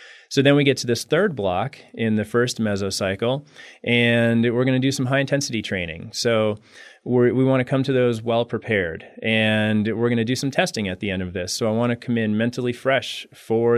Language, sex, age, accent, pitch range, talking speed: English, male, 30-49, American, 110-125 Hz, 220 wpm